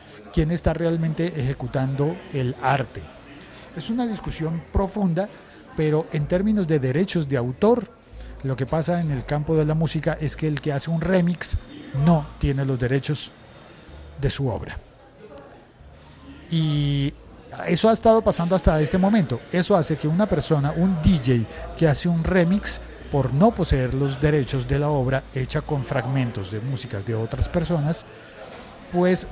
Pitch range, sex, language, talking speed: 135-175 Hz, male, Spanish, 155 wpm